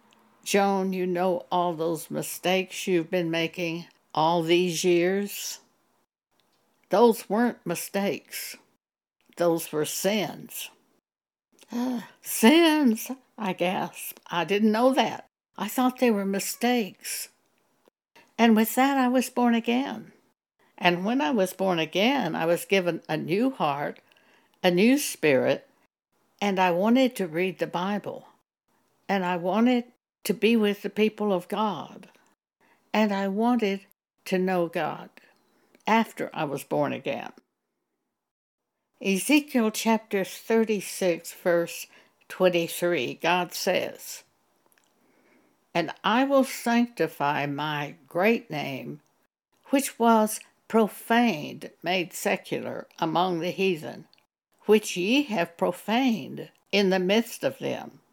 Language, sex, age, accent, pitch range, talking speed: English, female, 60-79, American, 175-235 Hz, 115 wpm